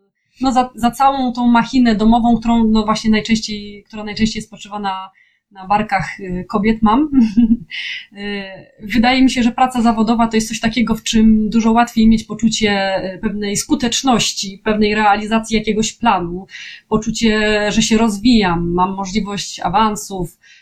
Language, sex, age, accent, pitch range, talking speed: Polish, female, 20-39, native, 205-235 Hz, 140 wpm